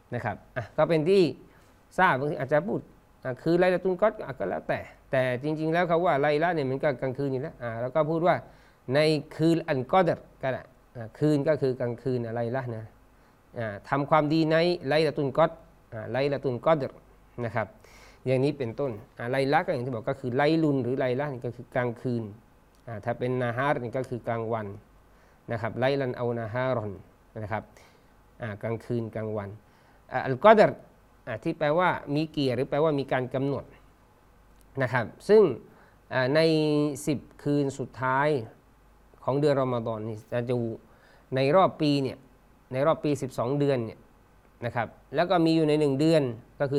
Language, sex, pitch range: Thai, male, 120-155 Hz